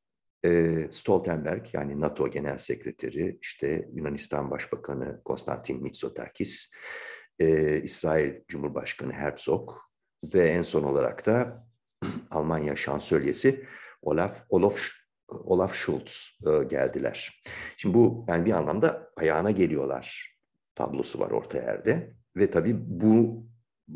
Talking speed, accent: 100 wpm, native